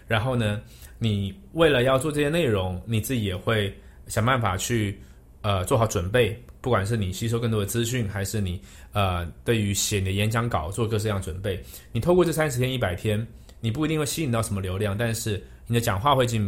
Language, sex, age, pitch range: Chinese, male, 20-39, 100-125 Hz